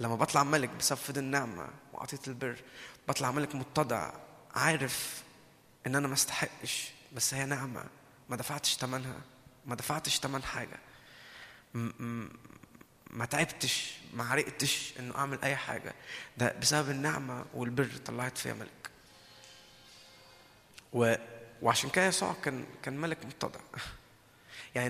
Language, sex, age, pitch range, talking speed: Arabic, male, 20-39, 120-140 Hz, 120 wpm